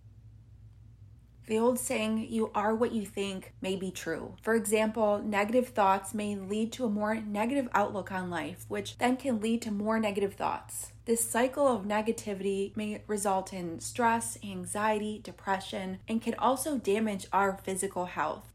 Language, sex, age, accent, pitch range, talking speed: English, female, 20-39, American, 190-230 Hz, 160 wpm